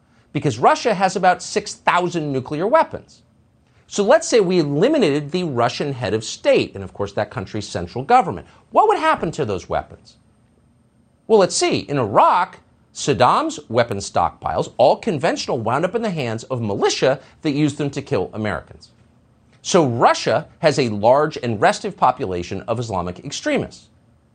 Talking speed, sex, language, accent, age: 160 wpm, male, English, American, 50-69